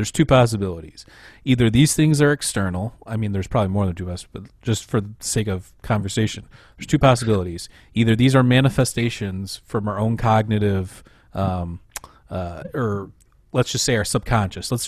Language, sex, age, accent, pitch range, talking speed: English, male, 30-49, American, 100-120 Hz, 180 wpm